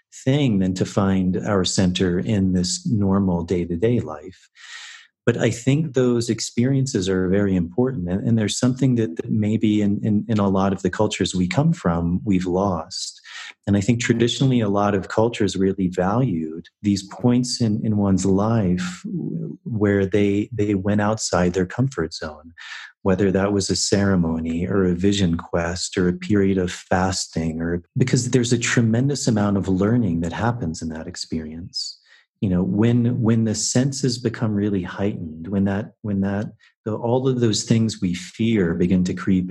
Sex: male